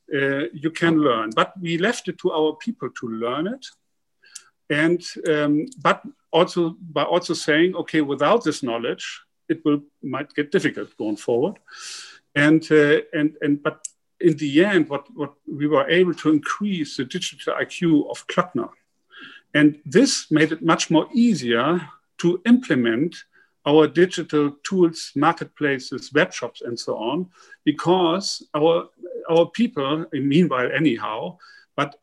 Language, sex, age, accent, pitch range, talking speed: English, male, 50-69, German, 145-180 Hz, 140 wpm